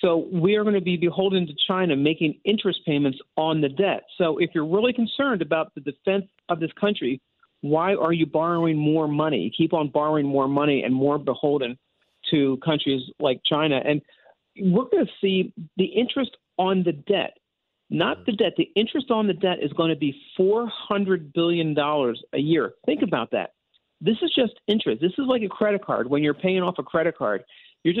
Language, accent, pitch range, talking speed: English, American, 150-200 Hz, 195 wpm